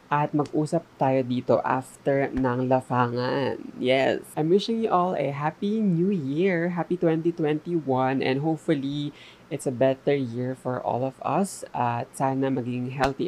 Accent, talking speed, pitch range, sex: Filipino, 150 wpm, 130-170 Hz, female